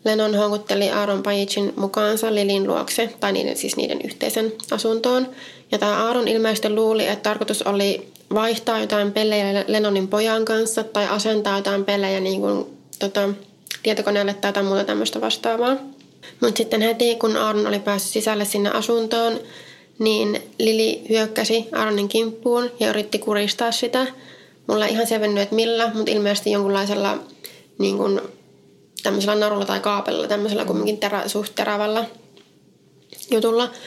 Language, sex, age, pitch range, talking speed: Finnish, female, 20-39, 200-225 Hz, 135 wpm